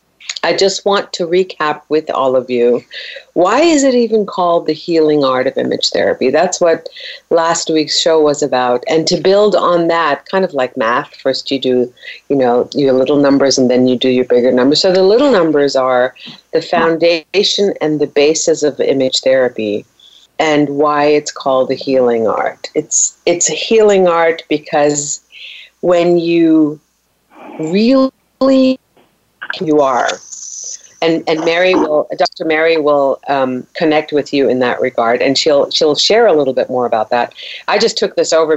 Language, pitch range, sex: English, 145-220 Hz, female